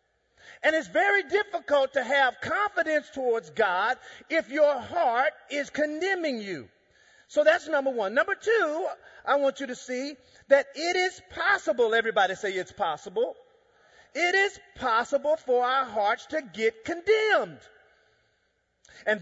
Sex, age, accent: male, 40-59, American